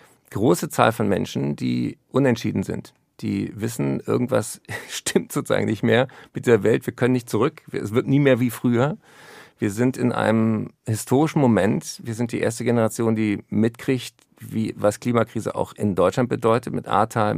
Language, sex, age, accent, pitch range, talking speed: German, male, 50-69, German, 105-125 Hz, 170 wpm